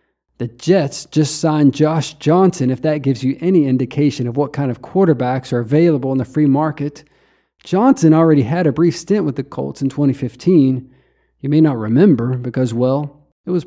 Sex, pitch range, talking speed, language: male, 125-165 Hz, 185 wpm, English